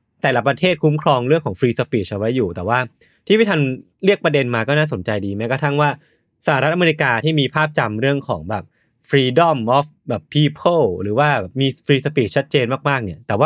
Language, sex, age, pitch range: Thai, male, 20-39, 120-160 Hz